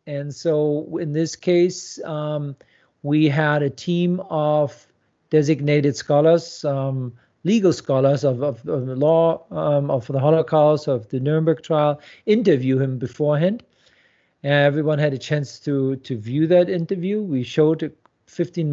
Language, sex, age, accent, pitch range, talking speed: English, male, 50-69, German, 145-175 Hz, 140 wpm